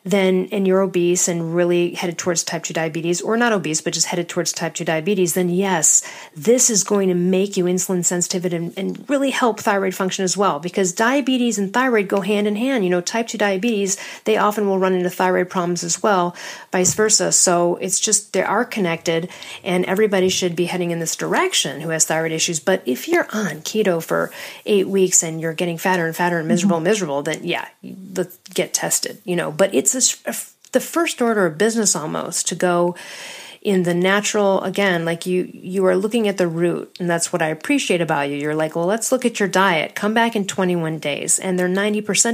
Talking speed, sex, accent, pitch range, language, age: 210 wpm, female, American, 175-215 Hz, English, 40-59